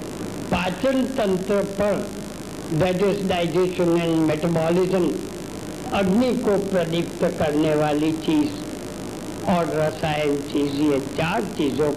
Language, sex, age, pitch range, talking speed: Hindi, female, 60-79, 170-215 Hz, 95 wpm